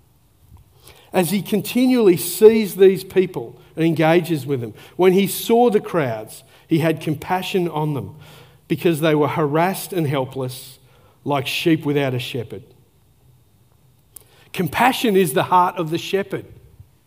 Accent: Australian